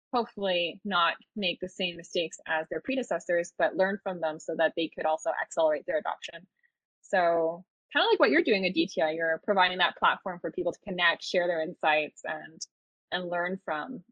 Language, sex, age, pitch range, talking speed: English, female, 20-39, 175-225 Hz, 190 wpm